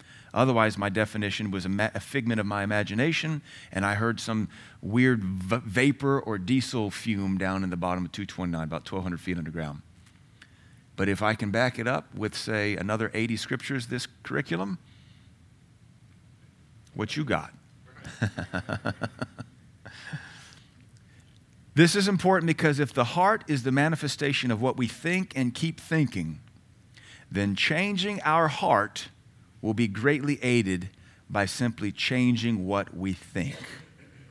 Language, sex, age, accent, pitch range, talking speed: English, male, 40-59, American, 95-130 Hz, 135 wpm